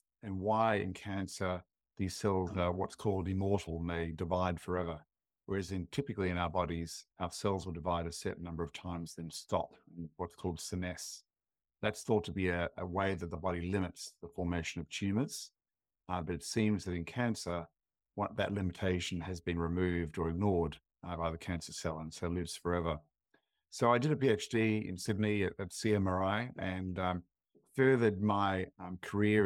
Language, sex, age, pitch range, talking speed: English, male, 50-69, 85-100 Hz, 175 wpm